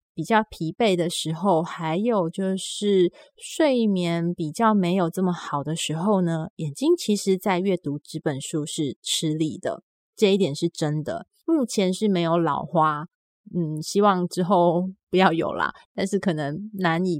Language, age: Chinese, 20-39